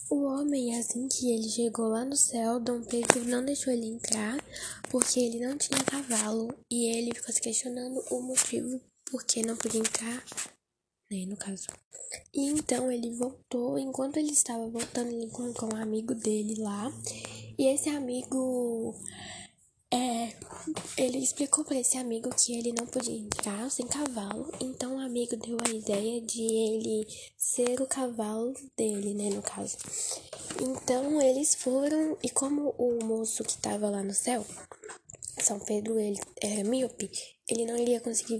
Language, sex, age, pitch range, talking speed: Portuguese, female, 10-29, 220-255 Hz, 160 wpm